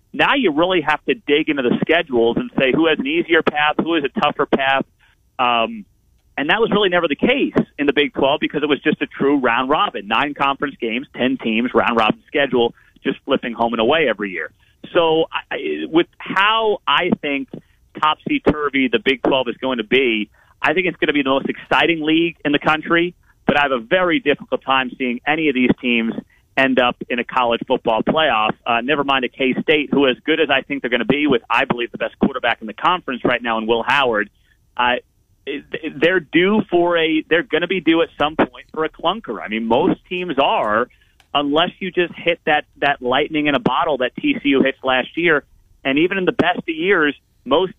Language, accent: English, American